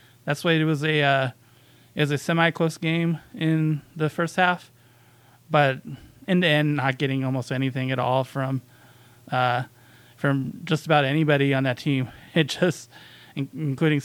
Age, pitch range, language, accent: 20-39, 125-160 Hz, English, American